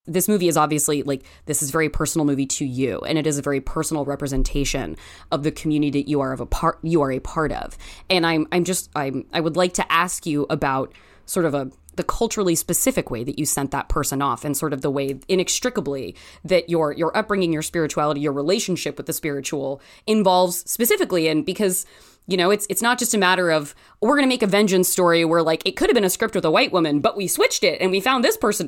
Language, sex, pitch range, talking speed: English, female, 145-190 Hz, 245 wpm